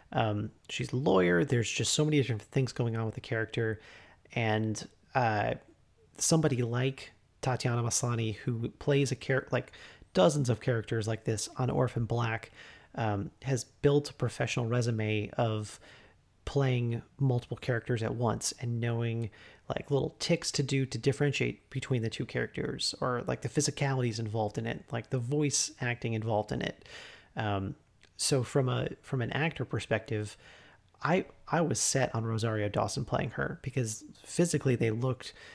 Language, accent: English, American